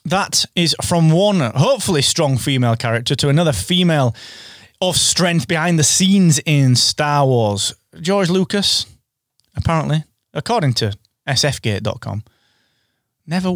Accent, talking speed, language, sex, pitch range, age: British, 115 wpm, English, male, 110-145 Hz, 20-39